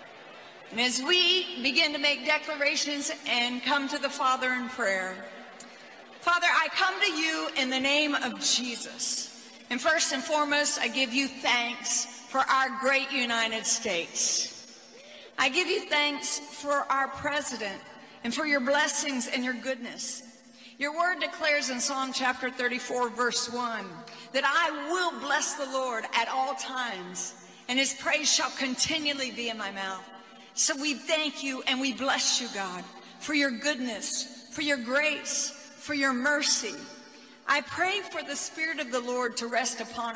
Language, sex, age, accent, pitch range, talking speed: English, female, 50-69, American, 245-295 Hz, 160 wpm